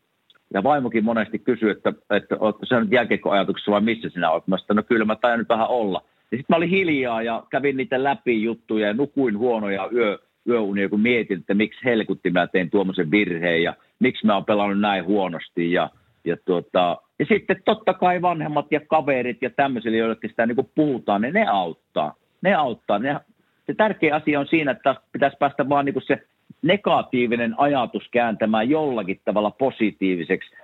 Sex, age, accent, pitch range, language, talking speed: male, 50-69, native, 105-145 Hz, Finnish, 180 wpm